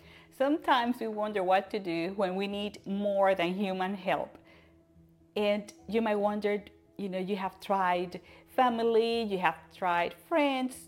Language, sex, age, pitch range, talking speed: English, female, 40-59, 190-235 Hz, 150 wpm